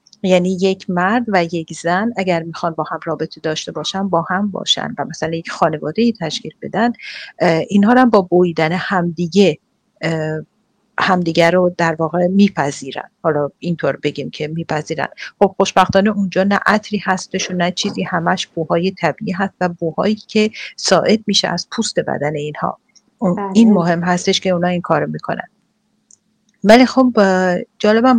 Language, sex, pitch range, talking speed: English, female, 170-210 Hz, 155 wpm